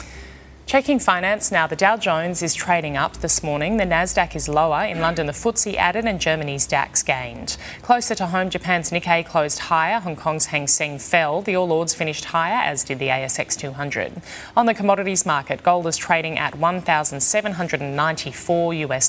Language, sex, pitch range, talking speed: English, female, 145-180 Hz, 175 wpm